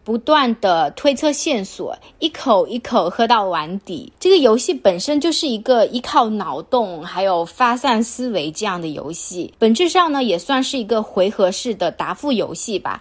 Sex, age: female, 20-39